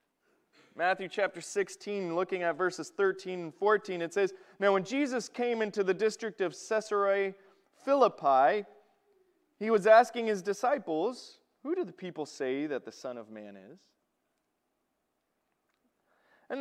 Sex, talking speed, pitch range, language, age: male, 135 wpm, 185-235 Hz, English, 30-49